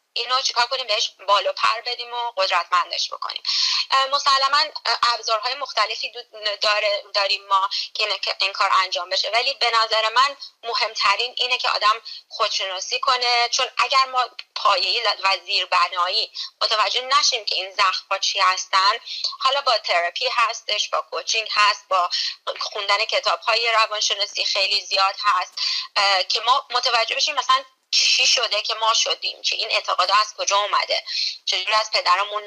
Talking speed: 145 wpm